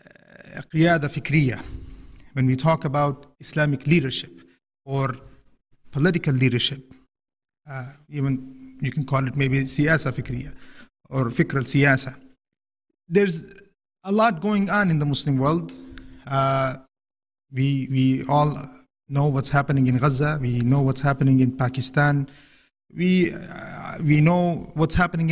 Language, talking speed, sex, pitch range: English, 125 wpm, male, 135-170 Hz